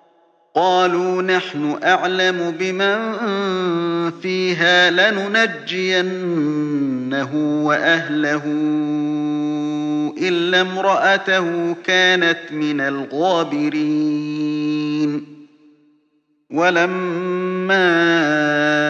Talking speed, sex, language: 40 wpm, male, Arabic